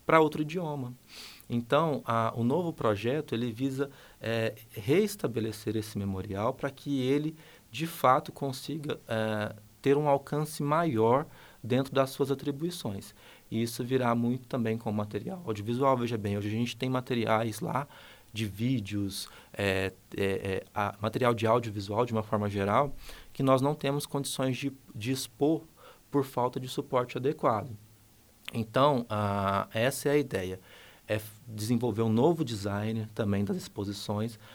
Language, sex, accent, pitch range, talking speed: Portuguese, male, Brazilian, 105-135 Hz, 135 wpm